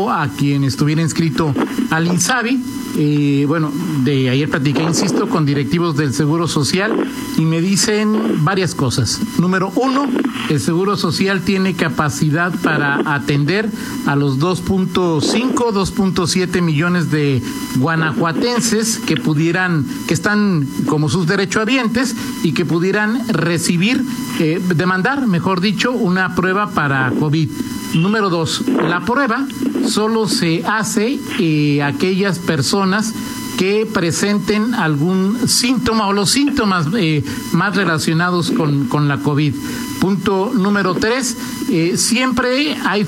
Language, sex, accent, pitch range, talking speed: Spanish, male, Mexican, 160-230 Hz, 120 wpm